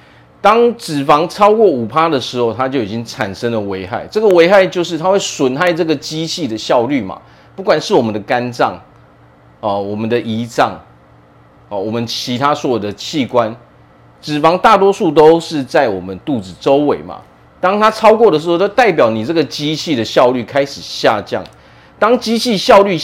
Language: Chinese